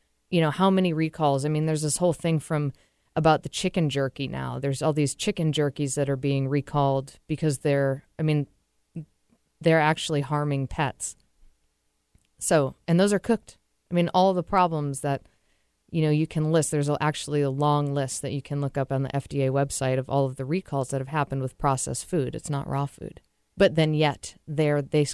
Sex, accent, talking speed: female, American, 200 wpm